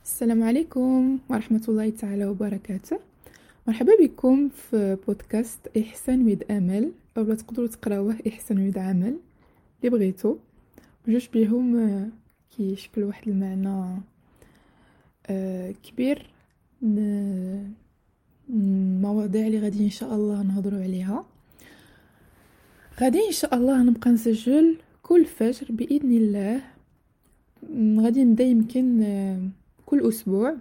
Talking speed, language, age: 95 wpm, Arabic, 20-39